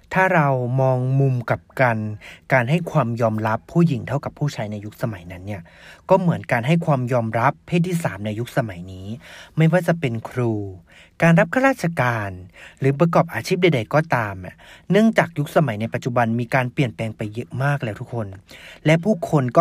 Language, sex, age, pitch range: Thai, male, 30-49, 115-165 Hz